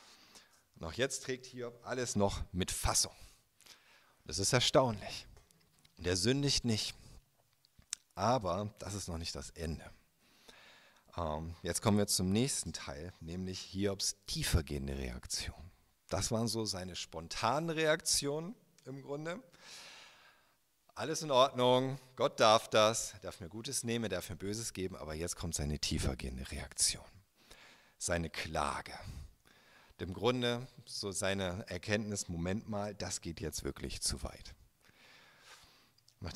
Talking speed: 125 wpm